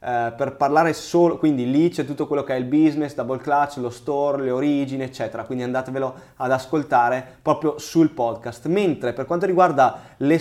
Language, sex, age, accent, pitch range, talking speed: Italian, male, 20-39, native, 130-160 Hz, 180 wpm